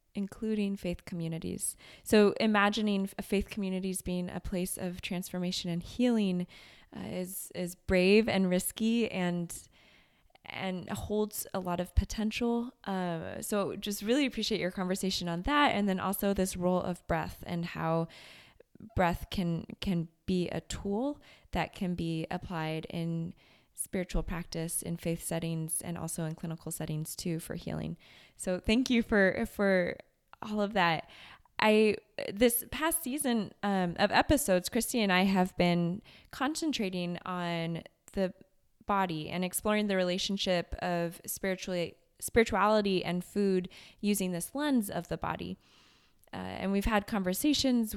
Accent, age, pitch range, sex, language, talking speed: American, 20-39, 175-210 Hz, female, English, 145 wpm